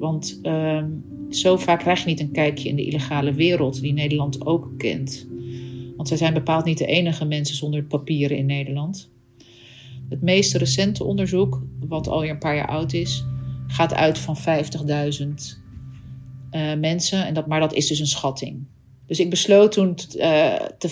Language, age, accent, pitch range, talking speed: Dutch, 40-59, Dutch, 130-165 Hz, 175 wpm